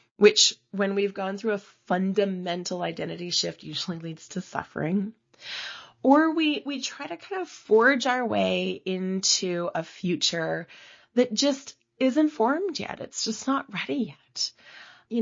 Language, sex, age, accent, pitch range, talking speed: English, female, 20-39, American, 165-205 Hz, 145 wpm